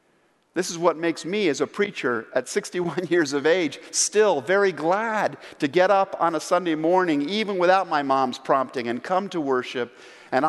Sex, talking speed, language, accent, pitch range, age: male, 190 wpm, English, American, 125-180 Hz, 50-69